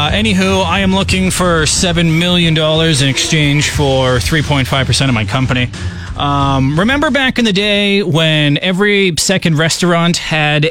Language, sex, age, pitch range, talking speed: English, male, 30-49, 140-190 Hz, 145 wpm